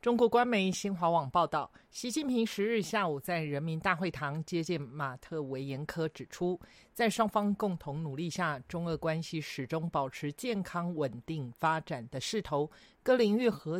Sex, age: male, 50-69